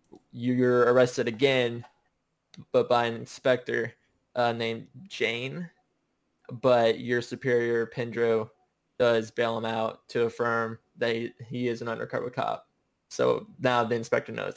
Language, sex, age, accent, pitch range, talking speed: English, male, 20-39, American, 115-130 Hz, 130 wpm